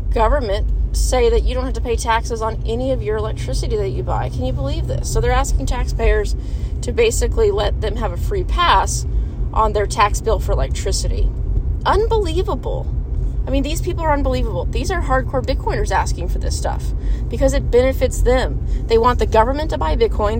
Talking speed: 190 wpm